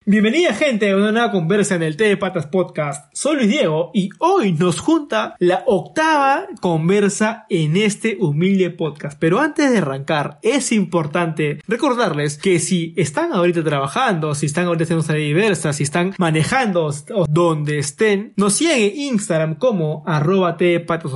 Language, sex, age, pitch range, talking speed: Spanish, male, 20-39, 170-230 Hz, 160 wpm